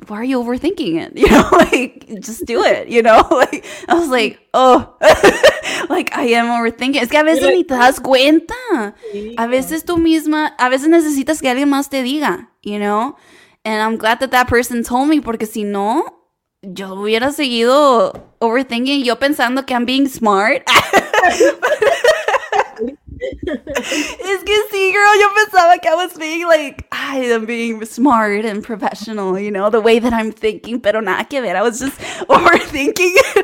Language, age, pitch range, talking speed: English, 20-39, 225-315 Hz, 175 wpm